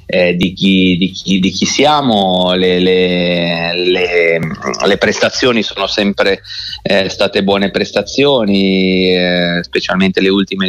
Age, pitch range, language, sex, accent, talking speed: 30-49, 95-110 Hz, Italian, male, native, 130 wpm